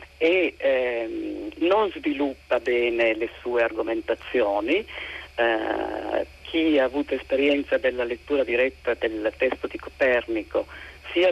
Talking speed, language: 110 wpm, Italian